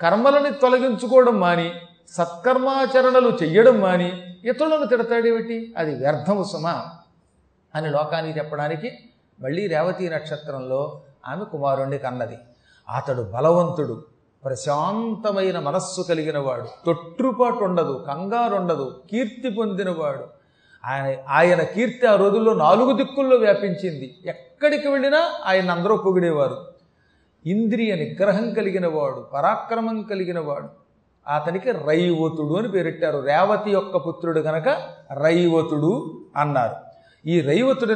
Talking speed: 100 wpm